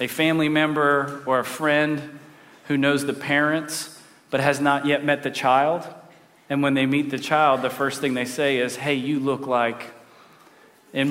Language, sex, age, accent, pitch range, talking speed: English, male, 40-59, American, 140-160 Hz, 185 wpm